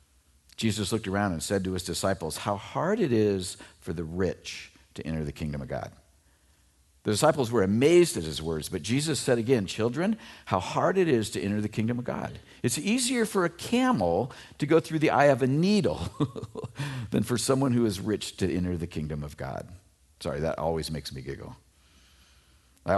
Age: 50-69